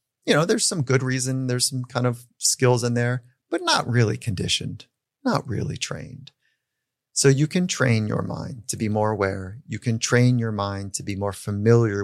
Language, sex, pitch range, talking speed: English, male, 105-135 Hz, 195 wpm